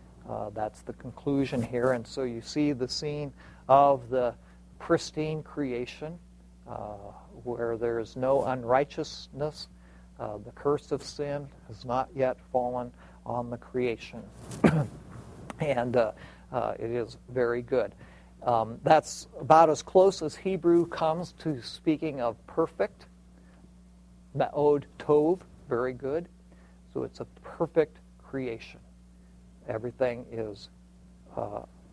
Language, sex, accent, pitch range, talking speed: English, male, American, 105-150 Hz, 120 wpm